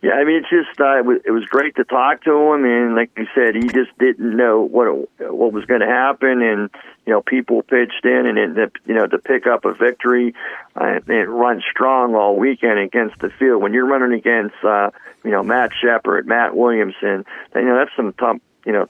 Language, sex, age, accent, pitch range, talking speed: English, male, 50-69, American, 115-140 Hz, 220 wpm